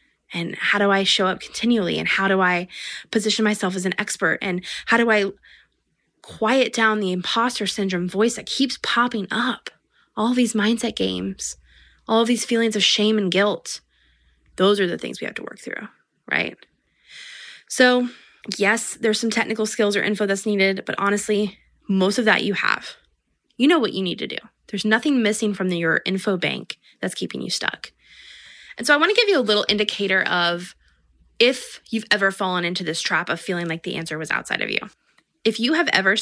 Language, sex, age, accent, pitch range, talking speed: English, female, 20-39, American, 195-235 Hz, 195 wpm